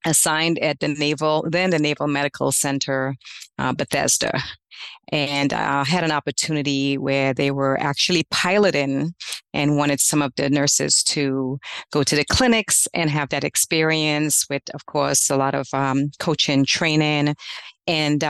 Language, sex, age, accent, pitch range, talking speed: English, female, 40-59, American, 140-160 Hz, 150 wpm